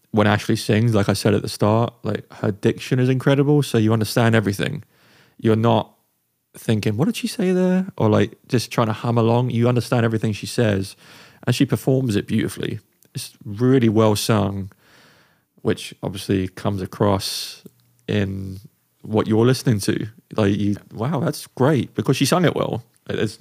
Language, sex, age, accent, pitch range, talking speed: English, male, 20-39, British, 105-125 Hz, 170 wpm